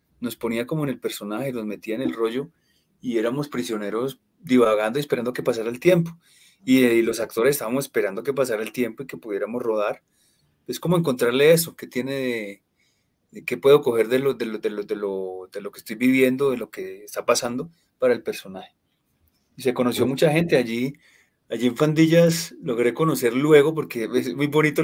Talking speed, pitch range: 185 wpm, 115-155 Hz